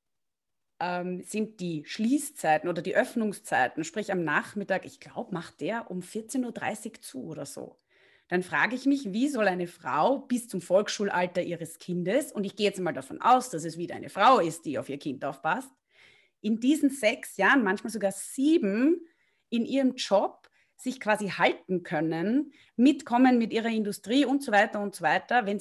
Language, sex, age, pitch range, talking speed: German, female, 30-49, 180-250 Hz, 175 wpm